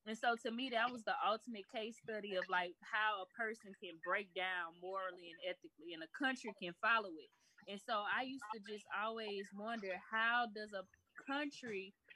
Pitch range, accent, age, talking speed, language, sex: 195-240 Hz, American, 20-39, 190 wpm, English, female